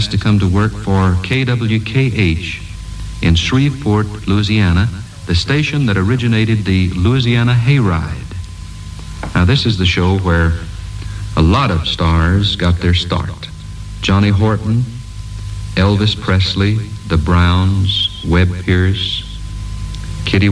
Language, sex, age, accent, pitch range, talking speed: English, male, 60-79, American, 90-105 Hz, 110 wpm